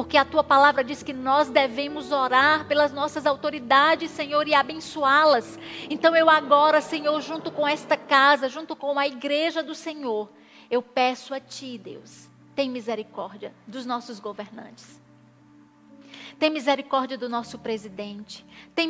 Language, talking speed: Portuguese, 145 wpm